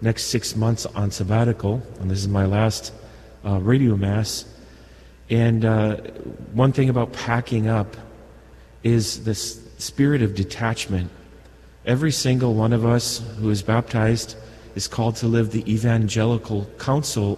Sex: male